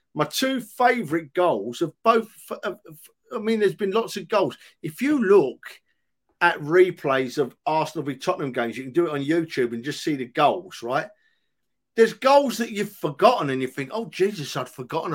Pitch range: 135-185 Hz